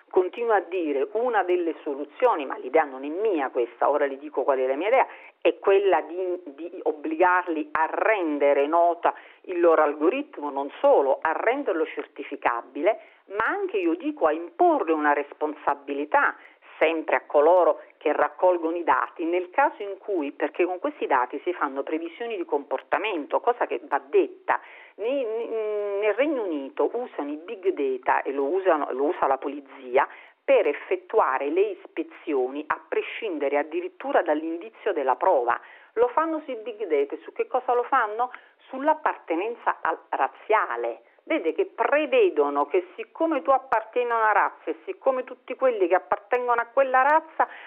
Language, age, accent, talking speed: Italian, 50-69, native, 155 wpm